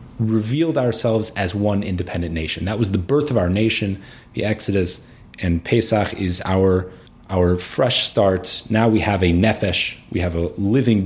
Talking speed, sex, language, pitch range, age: 170 wpm, male, English, 90-115 Hz, 30-49